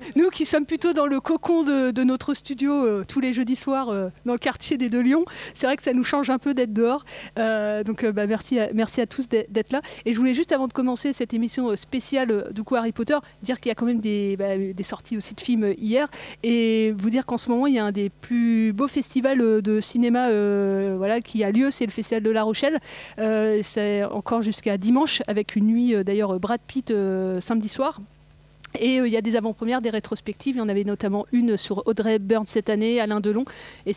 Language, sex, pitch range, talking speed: French, female, 205-250 Hz, 240 wpm